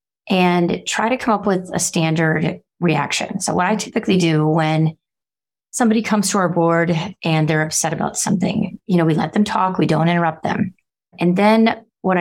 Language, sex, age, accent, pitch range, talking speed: English, female, 30-49, American, 160-195 Hz, 185 wpm